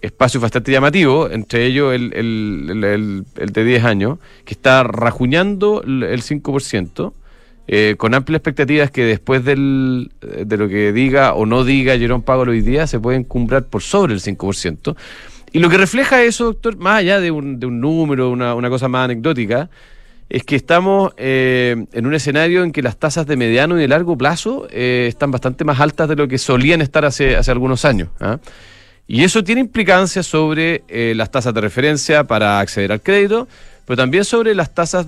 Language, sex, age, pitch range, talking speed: Spanish, male, 40-59, 120-165 Hz, 190 wpm